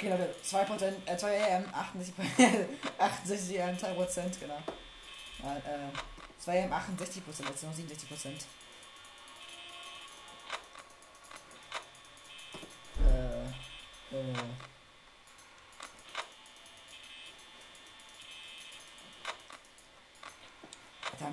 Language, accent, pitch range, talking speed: German, German, 130-185 Hz, 40 wpm